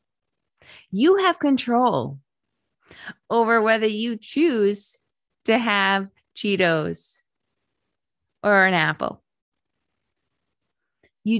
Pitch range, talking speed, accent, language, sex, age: 165-230 Hz, 75 wpm, American, English, female, 30-49